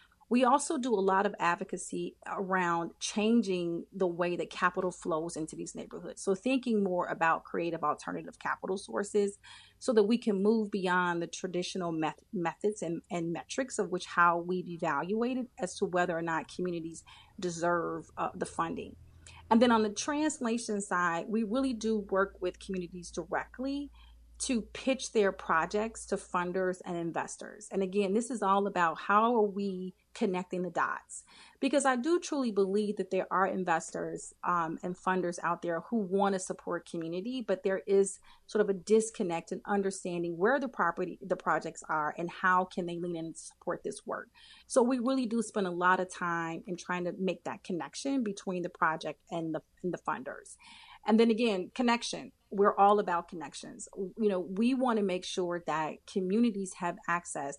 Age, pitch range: 30-49, 175-215 Hz